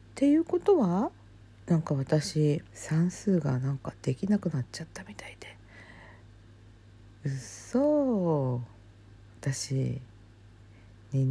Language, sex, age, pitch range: Japanese, female, 50-69, 105-160 Hz